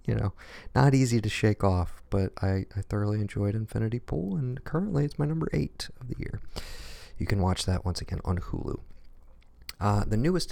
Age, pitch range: 40-59, 90-130 Hz